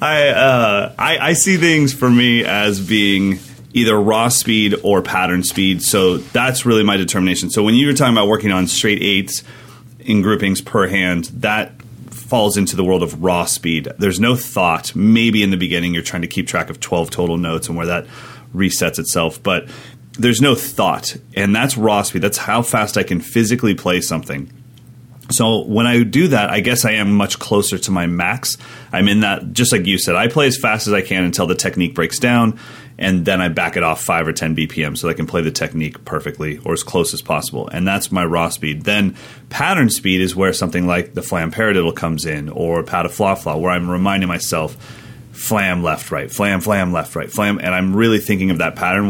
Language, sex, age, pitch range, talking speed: English, male, 30-49, 90-115 Hz, 215 wpm